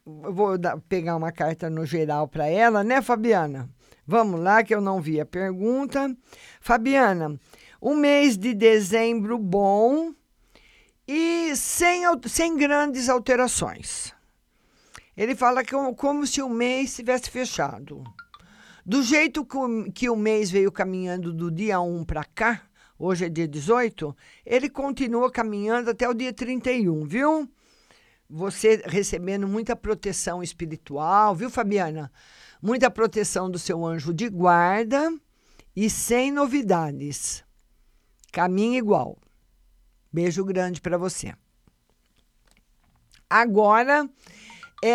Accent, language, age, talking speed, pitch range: Brazilian, Portuguese, 50-69, 120 wpm, 175-245 Hz